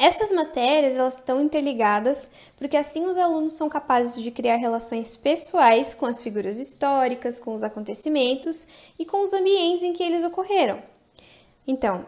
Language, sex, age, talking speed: Portuguese, female, 10-29, 155 wpm